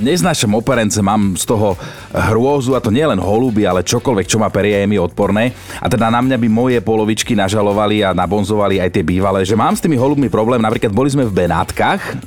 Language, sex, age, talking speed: Slovak, male, 30-49, 210 wpm